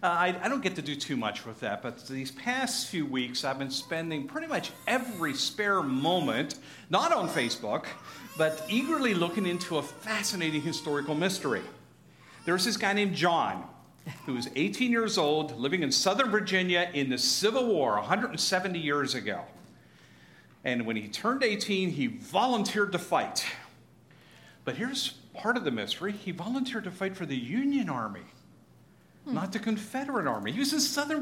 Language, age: English, 50-69